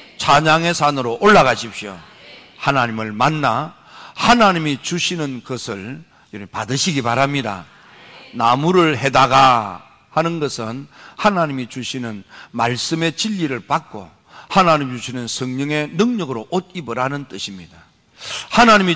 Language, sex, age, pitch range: Korean, male, 50-69, 115-160 Hz